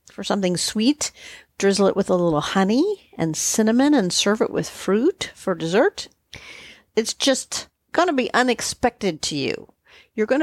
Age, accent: 50-69, American